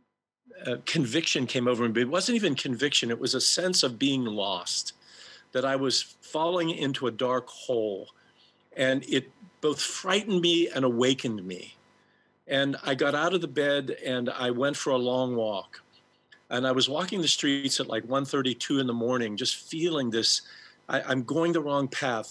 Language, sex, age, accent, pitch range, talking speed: English, male, 50-69, American, 125-160 Hz, 185 wpm